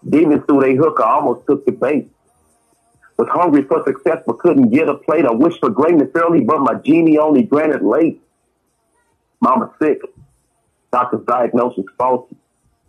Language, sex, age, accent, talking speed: English, male, 50-69, American, 160 wpm